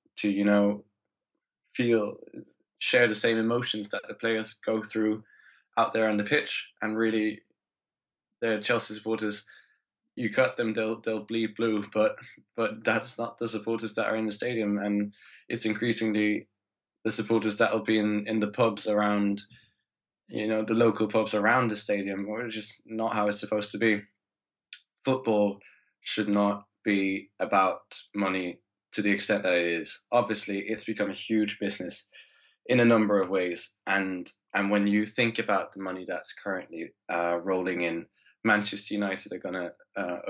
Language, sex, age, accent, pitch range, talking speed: English, male, 20-39, British, 100-110 Hz, 165 wpm